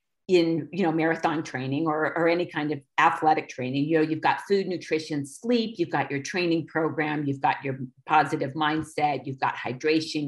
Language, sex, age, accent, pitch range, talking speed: English, female, 50-69, American, 150-185 Hz, 185 wpm